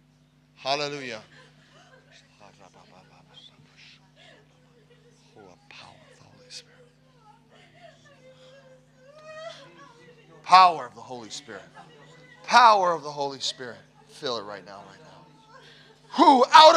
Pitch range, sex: 130-180 Hz, male